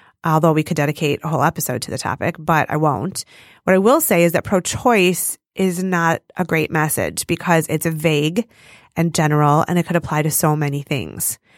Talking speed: 195 wpm